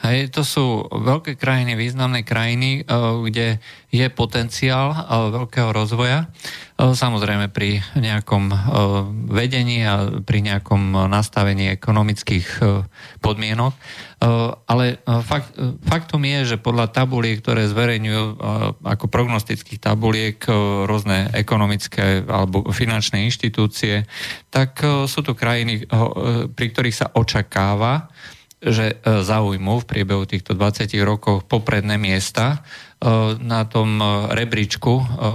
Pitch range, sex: 105-125 Hz, male